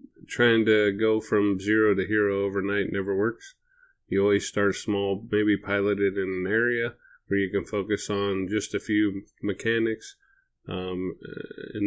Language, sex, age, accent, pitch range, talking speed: English, male, 30-49, American, 95-105 Hz, 155 wpm